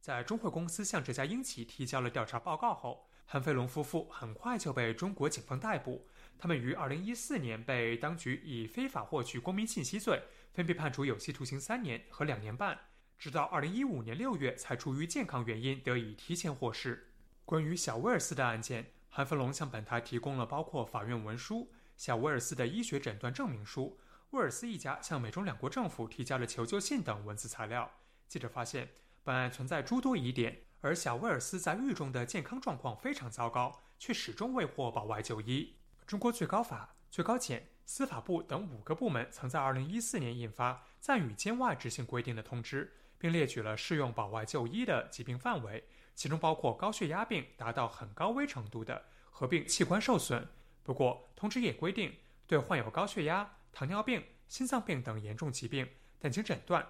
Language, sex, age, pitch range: Chinese, male, 20-39, 120-185 Hz